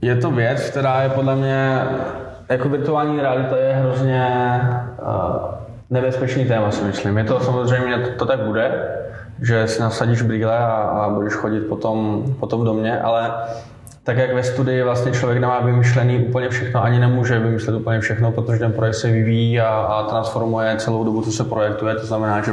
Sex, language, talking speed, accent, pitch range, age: male, Czech, 175 wpm, native, 110-120 Hz, 20-39